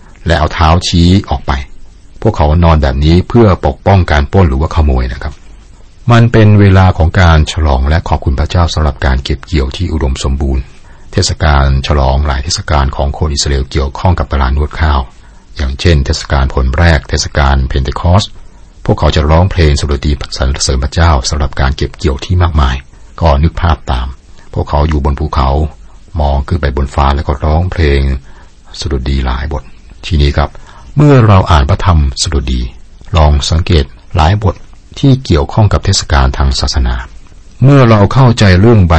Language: Thai